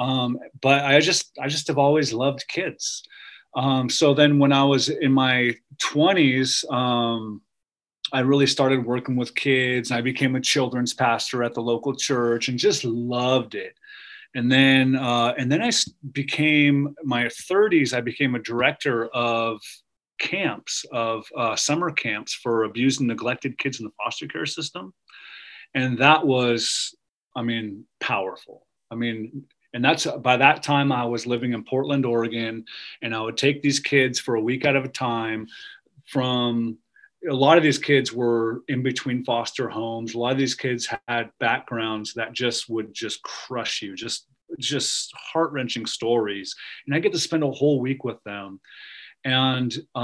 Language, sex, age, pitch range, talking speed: English, male, 30-49, 115-140 Hz, 165 wpm